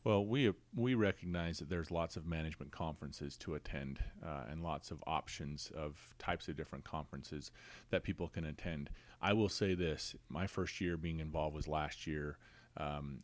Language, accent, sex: English, American, male